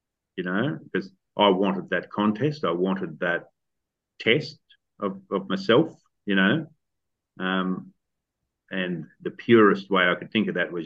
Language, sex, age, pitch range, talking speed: English, male, 40-59, 95-115 Hz, 150 wpm